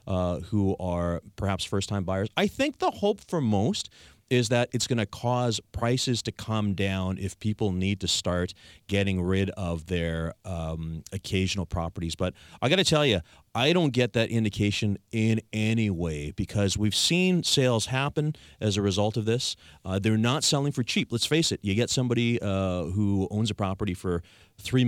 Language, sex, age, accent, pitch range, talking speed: English, male, 30-49, American, 95-125 Hz, 185 wpm